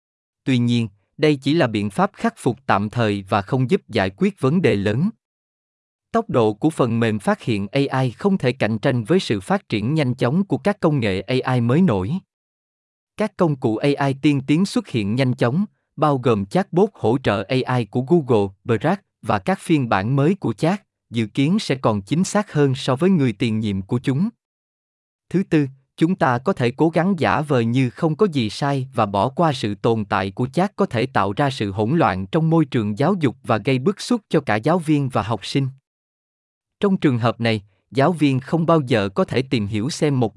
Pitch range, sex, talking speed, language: 110-165 Hz, male, 215 wpm, Vietnamese